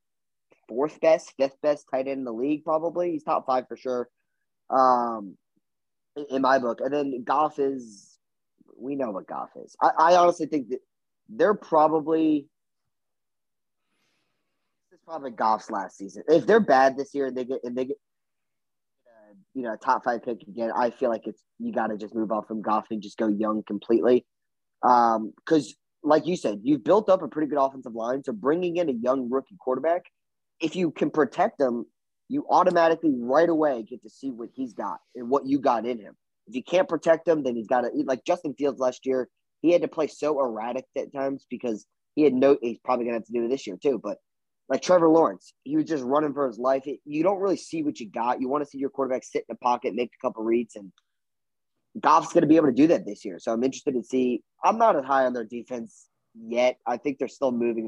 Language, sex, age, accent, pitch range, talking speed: English, male, 20-39, American, 120-160 Hz, 225 wpm